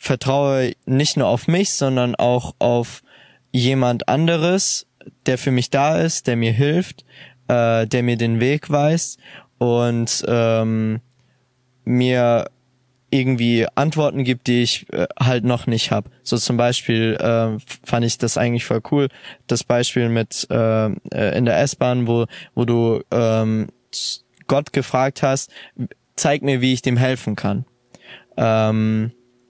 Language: German